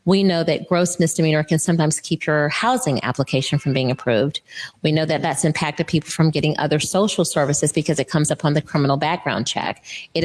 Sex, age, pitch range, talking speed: female, 30-49, 150-170 Hz, 200 wpm